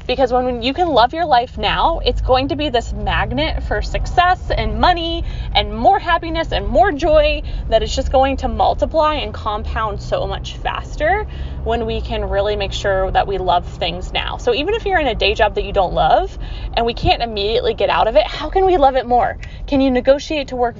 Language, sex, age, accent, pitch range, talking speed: English, female, 20-39, American, 225-320 Hz, 220 wpm